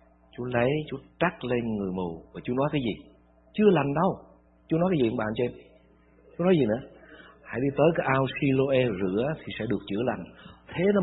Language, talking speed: Vietnamese, 220 wpm